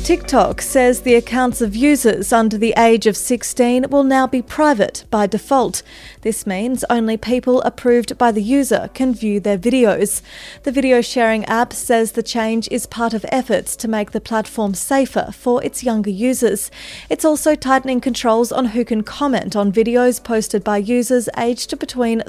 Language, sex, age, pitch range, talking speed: English, female, 30-49, 220-260 Hz, 170 wpm